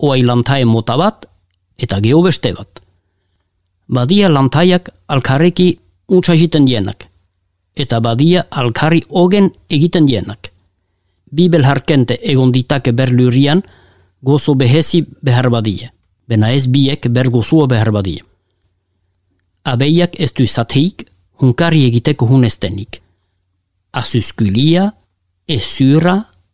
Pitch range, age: 95-155 Hz, 50-69